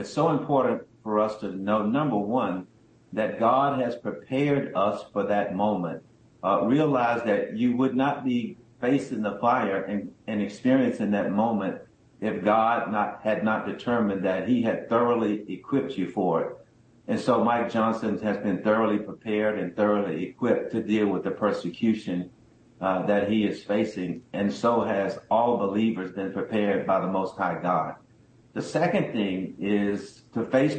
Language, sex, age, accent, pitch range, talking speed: English, male, 50-69, American, 100-120 Hz, 165 wpm